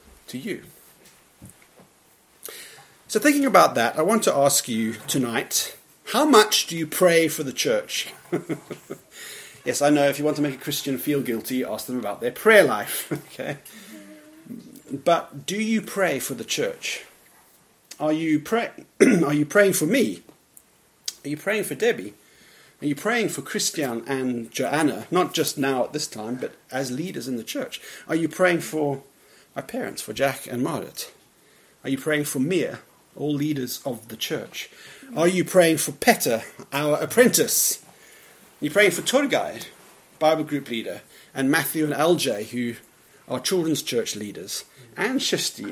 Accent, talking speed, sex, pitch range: British, 165 wpm, male, 135-185 Hz